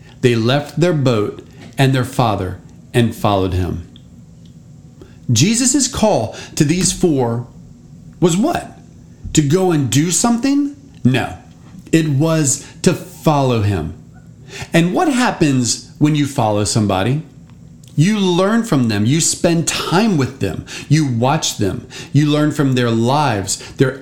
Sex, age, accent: male, 40-59, American